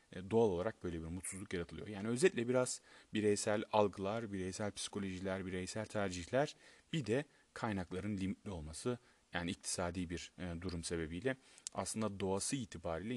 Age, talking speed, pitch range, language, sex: 30-49, 130 wpm, 90-110 Hz, Turkish, male